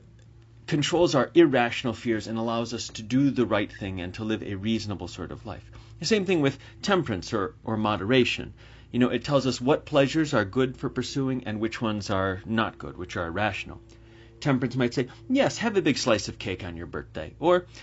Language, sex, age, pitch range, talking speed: English, male, 30-49, 110-135 Hz, 210 wpm